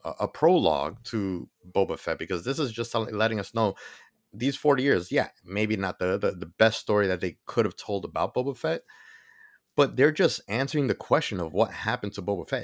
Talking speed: 205 wpm